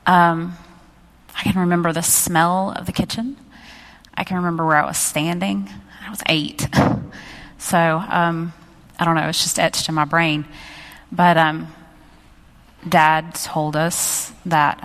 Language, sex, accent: English, female, American